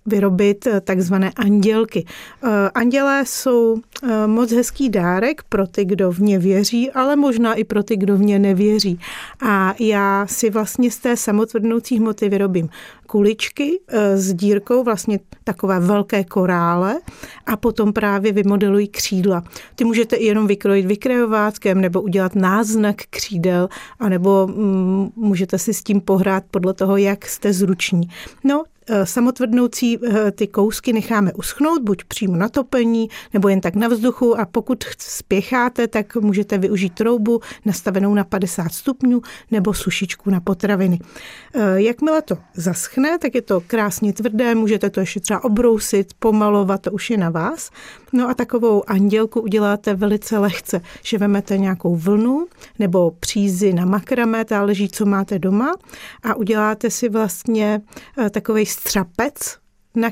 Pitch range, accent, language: 195-230 Hz, native, Czech